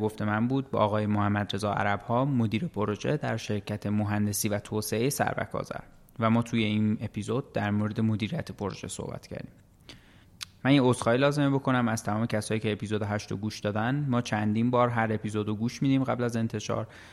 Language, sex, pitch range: Persian, male, 105-120 Hz